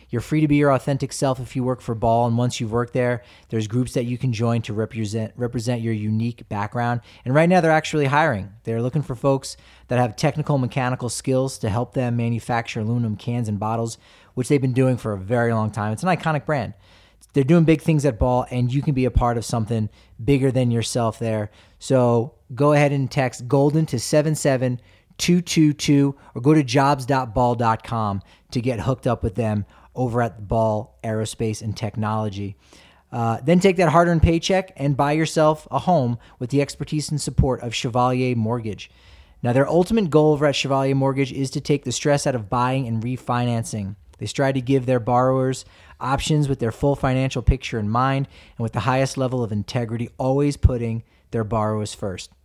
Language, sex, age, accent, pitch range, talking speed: English, male, 30-49, American, 115-140 Hz, 195 wpm